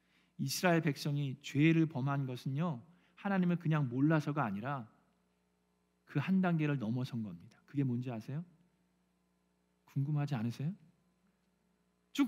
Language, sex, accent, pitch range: Korean, male, native, 110-175 Hz